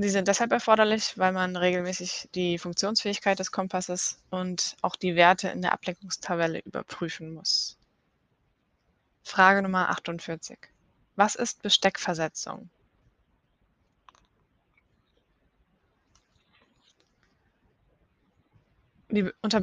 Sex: female